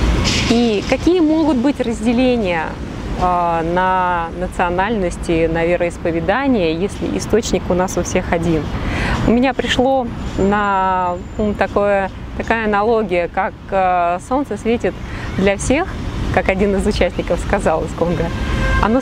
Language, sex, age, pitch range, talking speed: Russian, female, 20-39, 180-255 Hz, 115 wpm